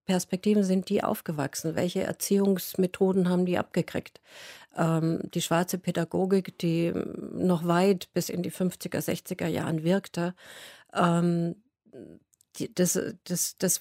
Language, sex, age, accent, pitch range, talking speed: German, female, 40-59, German, 160-185 Hz, 115 wpm